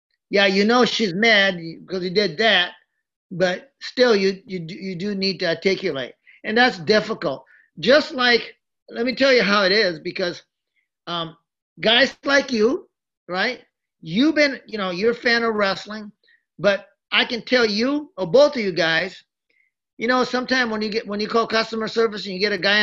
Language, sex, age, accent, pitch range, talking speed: English, male, 40-59, American, 190-245 Hz, 190 wpm